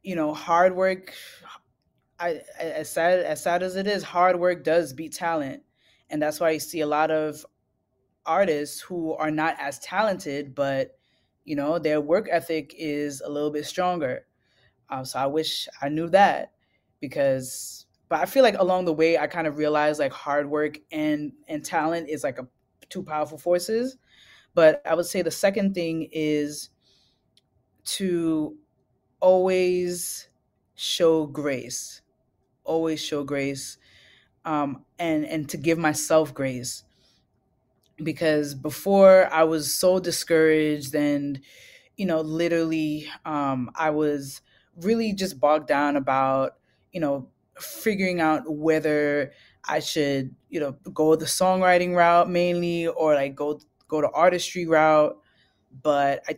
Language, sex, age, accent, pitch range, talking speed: English, female, 20-39, American, 145-175 Hz, 145 wpm